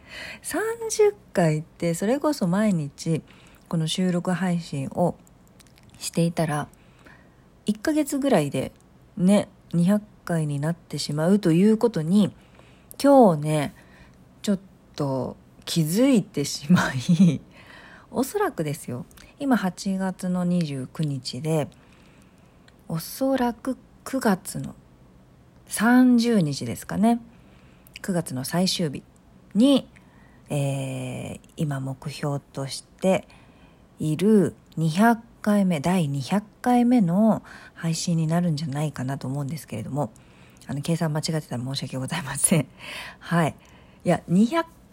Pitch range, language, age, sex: 140-220 Hz, Japanese, 40-59, female